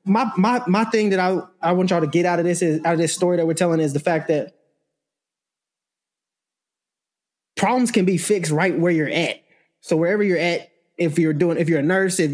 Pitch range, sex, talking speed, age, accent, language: 160-200 Hz, male, 225 wpm, 20-39, American, English